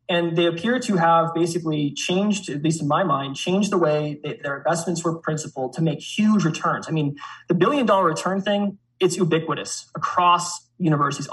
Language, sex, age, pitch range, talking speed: English, male, 20-39, 145-170 Hz, 180 wpm